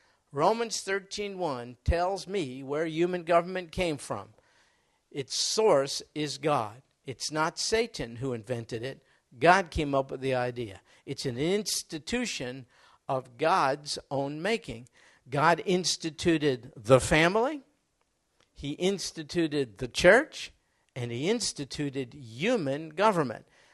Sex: male